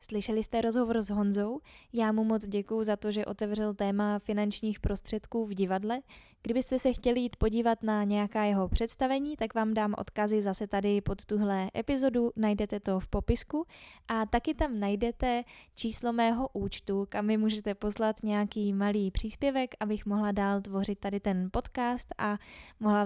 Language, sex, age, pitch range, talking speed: Czech, female, 10-29, 205-235 Hz, 165 wpm